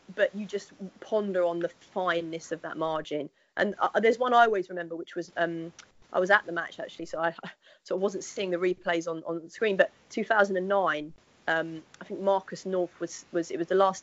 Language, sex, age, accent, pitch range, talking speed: English, female, 30-49, British, 160-190 Hz, 220 wpm